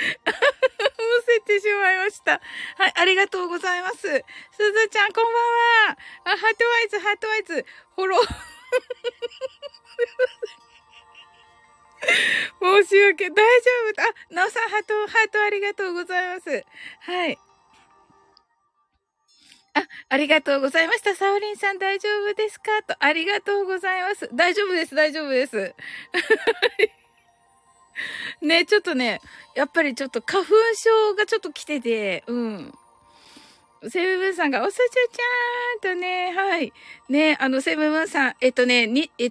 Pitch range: 265-425 Hz